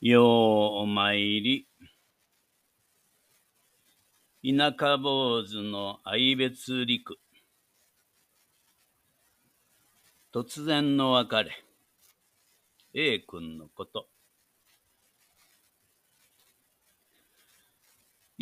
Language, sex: Japanese, male